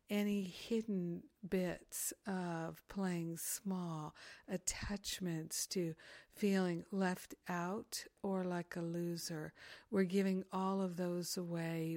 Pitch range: 175-195 Hz